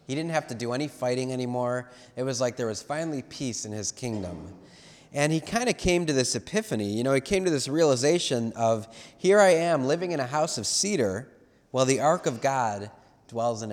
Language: English